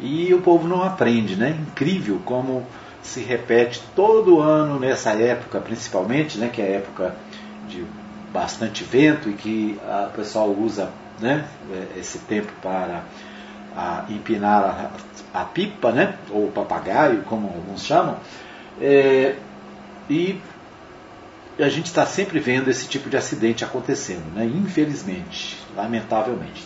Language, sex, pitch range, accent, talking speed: Portuguese, male, 115-175 Hz, Brazilian, 125 wpm